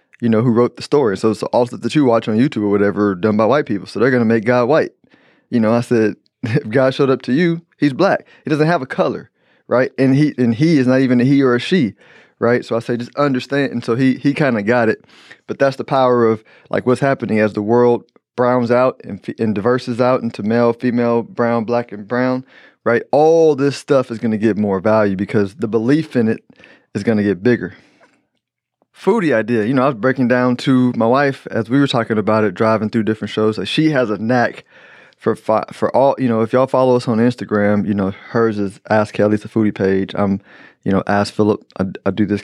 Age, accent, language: 20-39, American, English